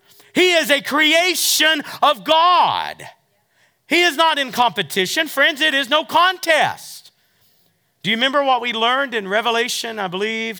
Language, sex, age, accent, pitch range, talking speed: English, male, 40-59, American, 205-295 Hz, 145 wpm